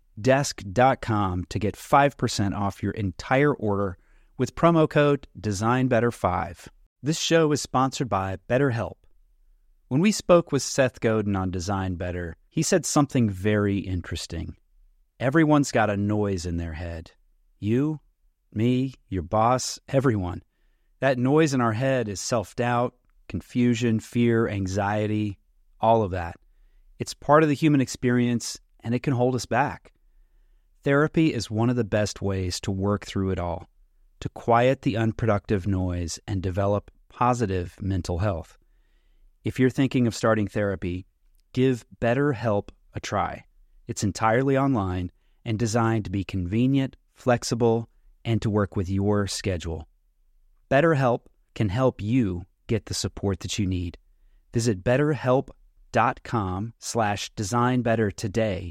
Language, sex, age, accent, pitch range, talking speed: English, male, 30-49, American, 95-125 Hz, 135 wpm